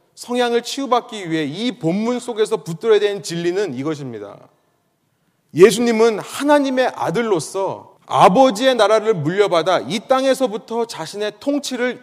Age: 30-49